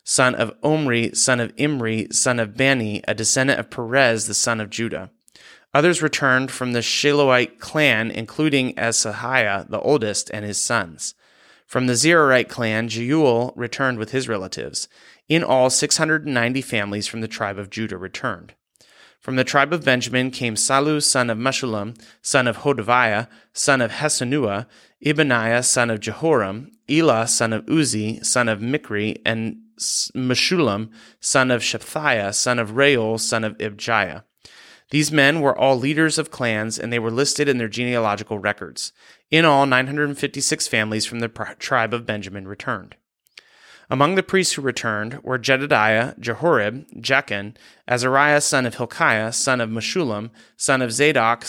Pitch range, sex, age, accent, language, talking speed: 110-140 Hz, male, 30-49, American, English, 155 wpm